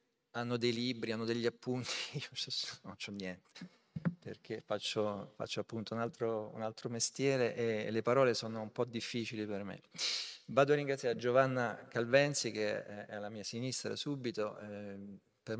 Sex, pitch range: male, 110-130 Hz